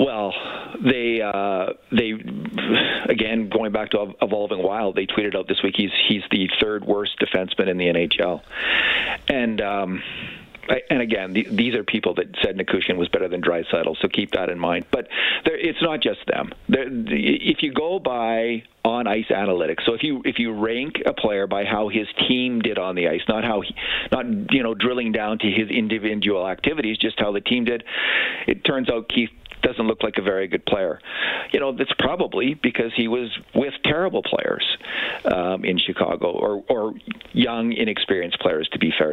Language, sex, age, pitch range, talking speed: English, male, 50-69, 105-125 Hz, 190 wpm